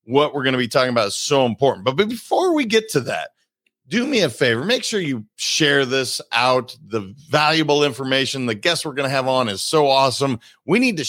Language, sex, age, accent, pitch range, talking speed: English, male, 40-59, American, 120-155 Hz, 225 wpm